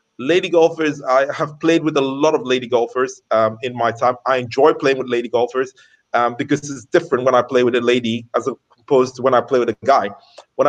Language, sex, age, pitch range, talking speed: English, male, 30-49, 120-150 Hz, 230 wpm